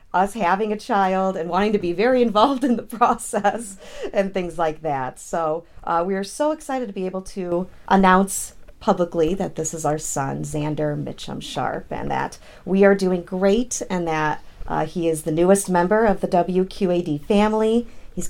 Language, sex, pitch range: English, female, 155-190 Hz